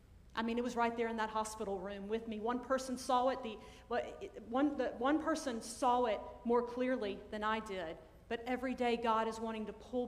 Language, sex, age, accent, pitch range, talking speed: English, female, 40-59, American, 220-255 Hz, 215 wpm